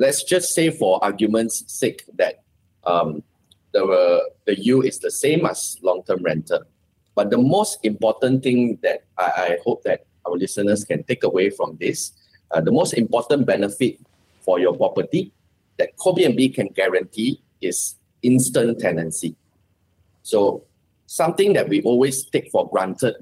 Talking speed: 150 wpm